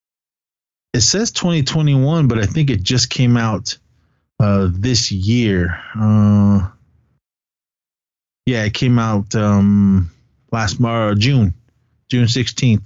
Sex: male